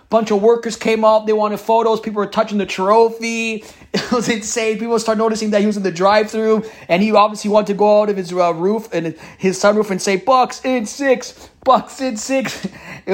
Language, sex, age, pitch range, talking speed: English, male, 30-49, 210-265 Hz, 220 wpm